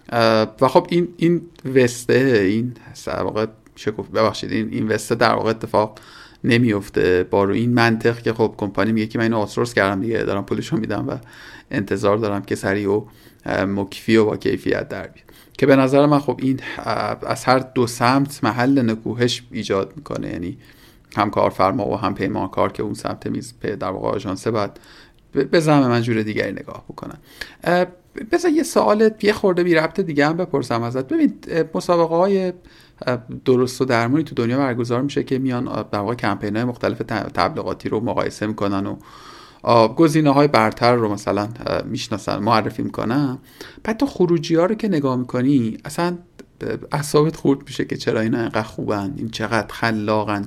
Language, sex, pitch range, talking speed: Persian, male, 110-155 Hz, 165 wpm